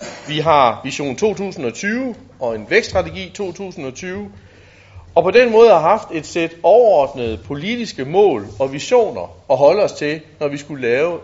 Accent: native